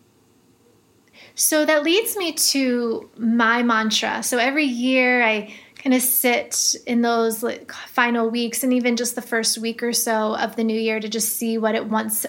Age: 20-39